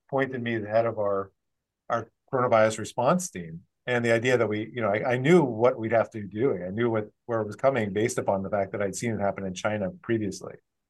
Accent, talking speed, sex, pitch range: American, 255 wpm, male, 110-145 Hz